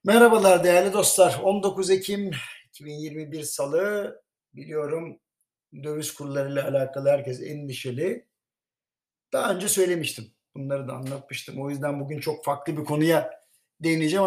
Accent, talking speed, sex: native, 120 wpm, male